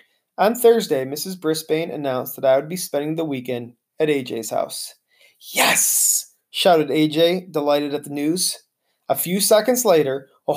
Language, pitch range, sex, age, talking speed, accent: English, 145-195 Hz, male, 30-49, 155 wpm, American